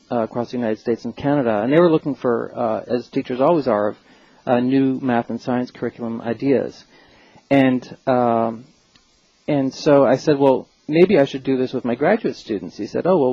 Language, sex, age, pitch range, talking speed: English, male, 40-59, 120-145 Hz, 205 wpm